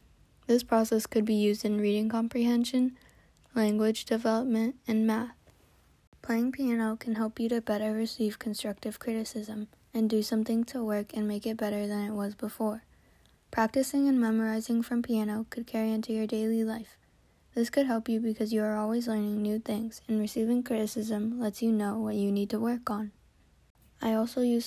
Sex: female